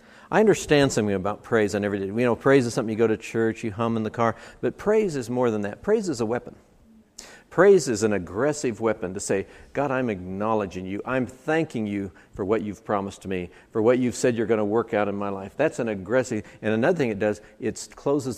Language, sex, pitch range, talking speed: English, male, 105-130 Hz, 240 wpm